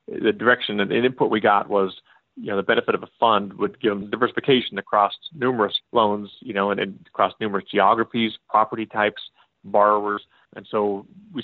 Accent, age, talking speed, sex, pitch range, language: American, 30-49, 180 wpm, male, 100-110 Hz, English